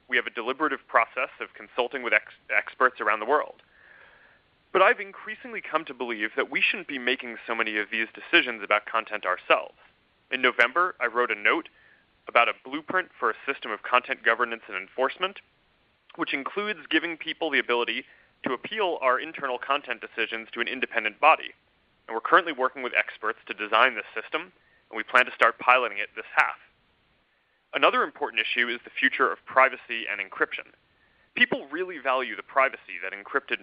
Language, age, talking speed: English, 30-49, 180 wpm